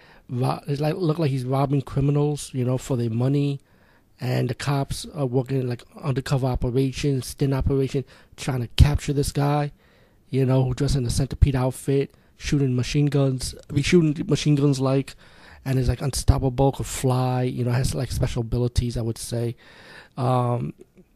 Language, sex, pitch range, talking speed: English, male, 125-140 Hz, 170 wpm